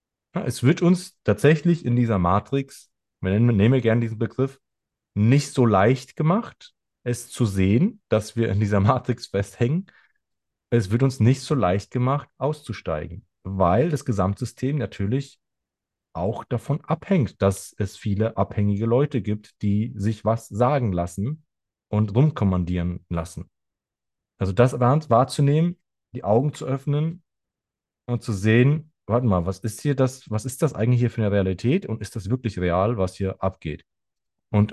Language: German